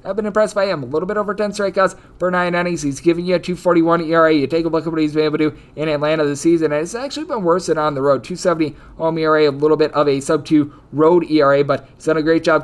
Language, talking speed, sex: English, 290 wpm, male